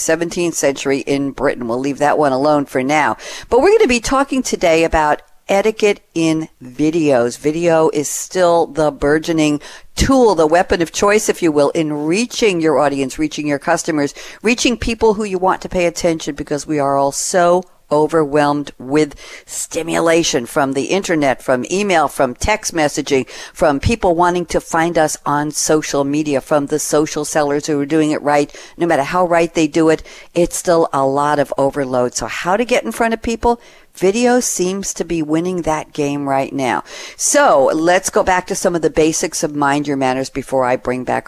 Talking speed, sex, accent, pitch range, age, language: 190 wpm, female, American, 140-185 Hz, 50-69, English